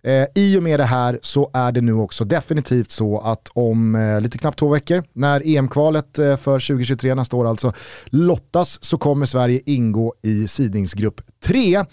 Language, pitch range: Swedish, 120-165 Hz